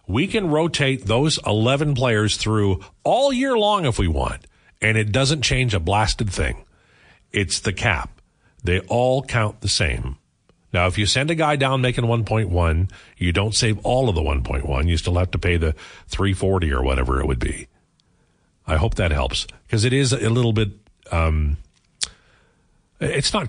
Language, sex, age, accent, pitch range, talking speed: English, male, 50-69, American, 85-115 Hz, 180 wpm